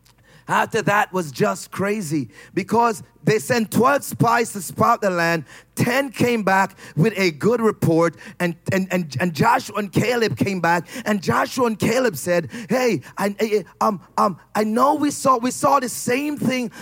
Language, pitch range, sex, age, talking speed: English, 180-230 Hz, male, 30-49, 175 wpm